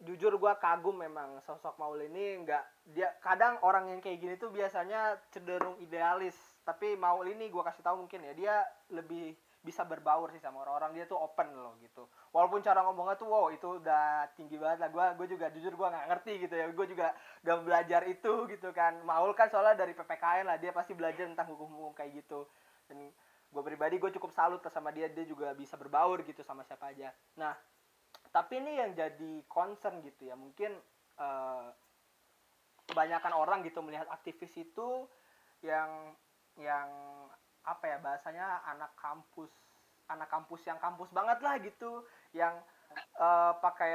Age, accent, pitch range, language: 20-39, native, 150-185 Hz, Indonesian